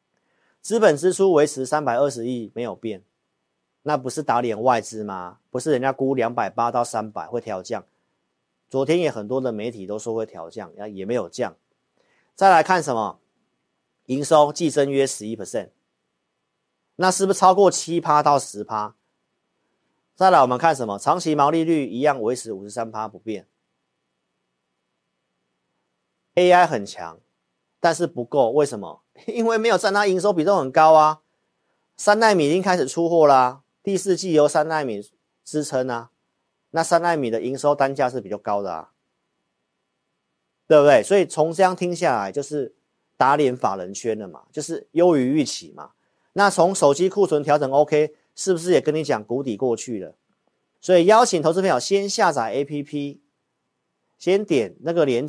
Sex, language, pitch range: male, Chinese, 105-165 Hz